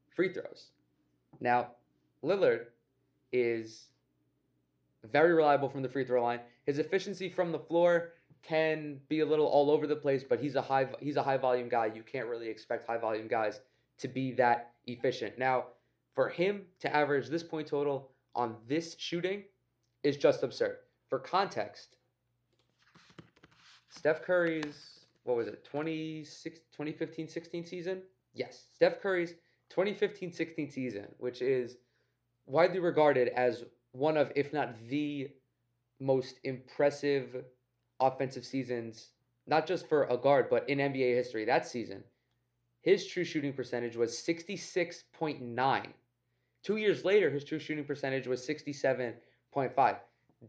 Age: 20-39